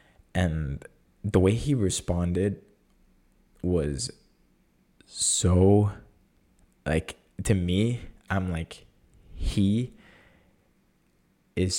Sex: male